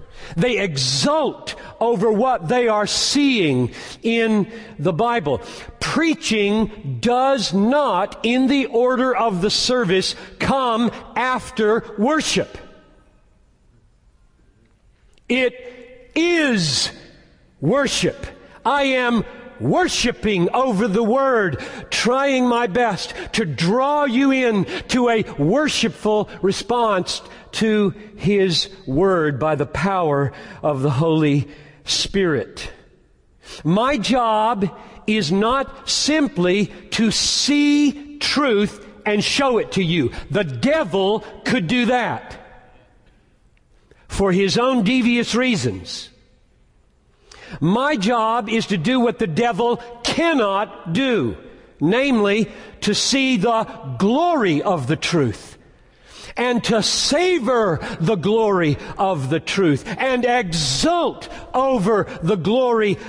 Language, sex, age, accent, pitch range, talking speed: Hindi, male, 50-69, American, 195-250 Hz, 100 wpm